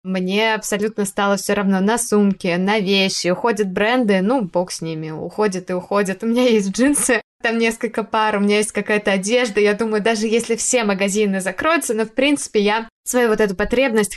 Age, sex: 20-39, female